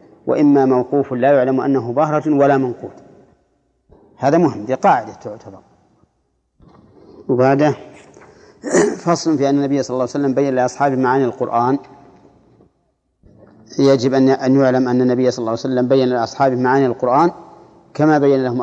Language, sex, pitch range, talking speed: Arabic, male, 125-140 Hz, 140 wpm